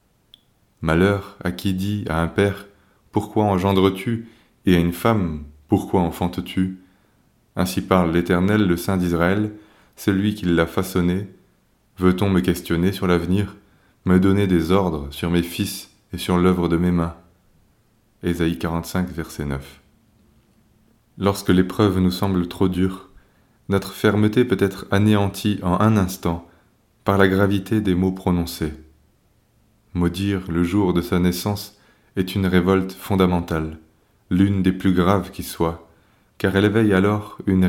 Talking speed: 140 wpm